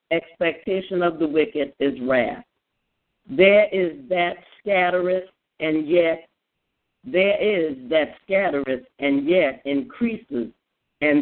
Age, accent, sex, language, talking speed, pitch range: 50-69, American, female, English, 105 wpm, 150-200 Hz